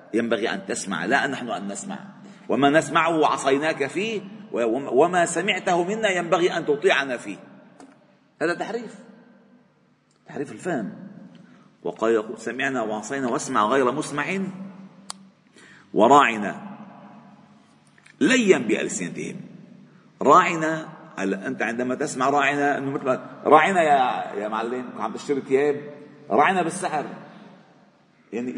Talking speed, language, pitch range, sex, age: 105 wpm, Arabic, 145-200 Hz, male, 50-69